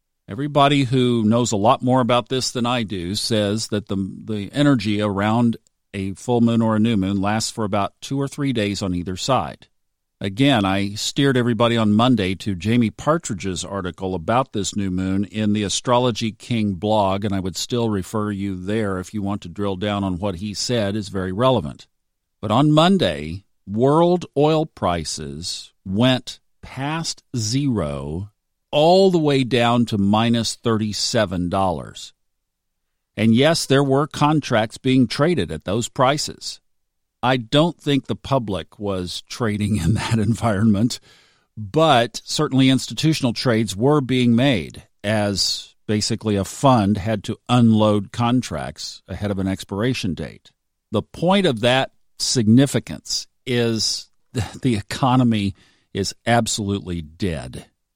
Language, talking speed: English, 145 wpm